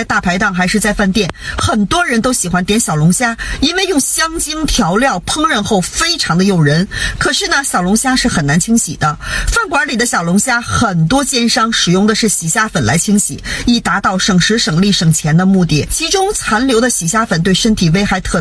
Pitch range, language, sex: 180-245 Hz, Chinese, female